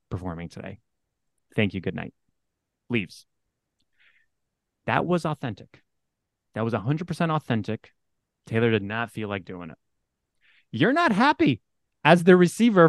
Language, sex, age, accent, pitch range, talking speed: English, male, 30-49, American, 100-130 Hz, 125 wpm